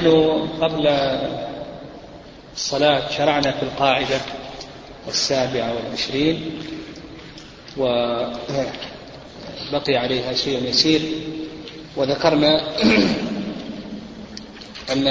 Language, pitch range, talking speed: Arabic, 140-155 Hz, 55 wpm